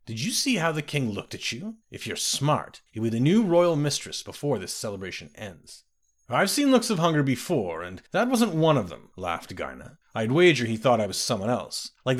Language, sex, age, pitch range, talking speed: English, male, 30-49, 110-155 Hz, 225 wpm